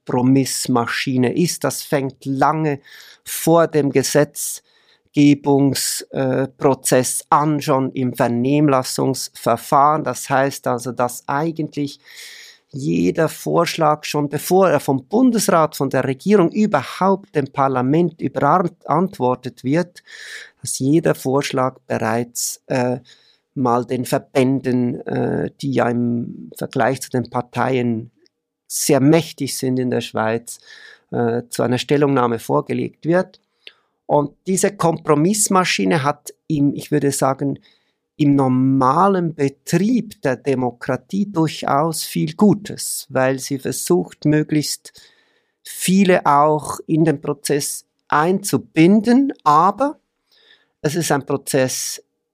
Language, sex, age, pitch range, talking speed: German, male, 50-69, 130-170 Hz, 105 wpm